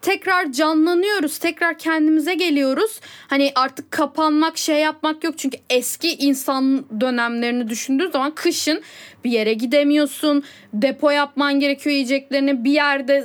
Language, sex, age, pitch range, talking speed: Turkish, female, 10-29, 245-310 Hz, 120 wpm